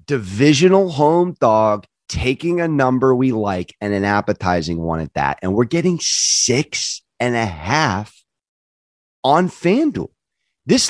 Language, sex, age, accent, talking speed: English, male, 30-49, American, 130 wpm